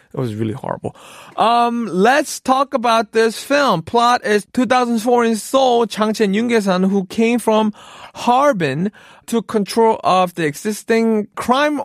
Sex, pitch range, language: male, 150-220 Hz, Korean